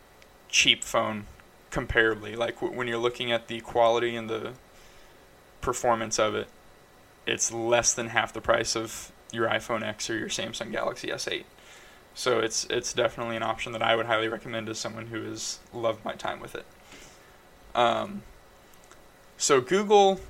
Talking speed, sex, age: 155 wpm, male, 20-39